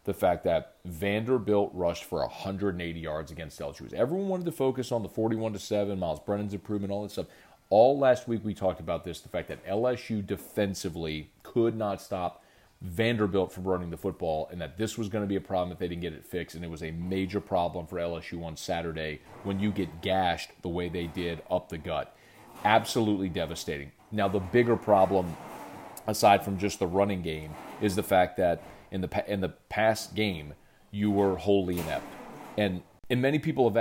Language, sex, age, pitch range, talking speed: English, male, 30-49, 90-110 Hz, 195 wpm